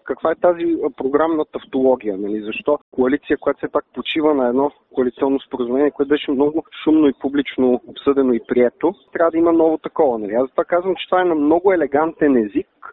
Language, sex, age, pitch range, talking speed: Bulgarian, male, 40-59, 130-175 Hz, 195 wpm